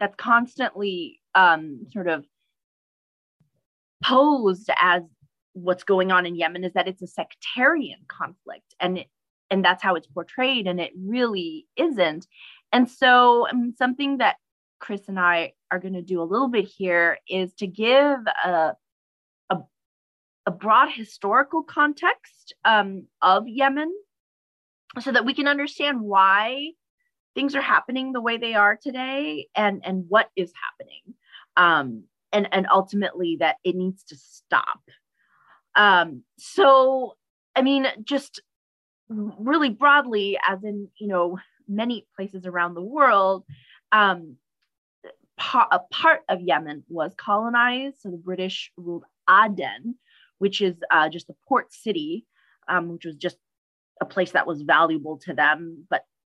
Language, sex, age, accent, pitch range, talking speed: English, female, 30-49, American, 180-260 Hz, 140 wpm